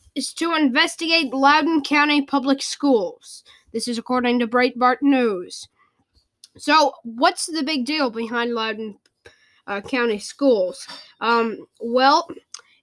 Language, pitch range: English, 225-275 Hz